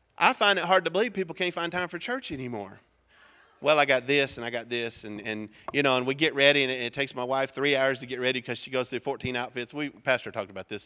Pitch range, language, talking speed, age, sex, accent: 120-170 Hz, English, 285 wpm, 40-59, male, American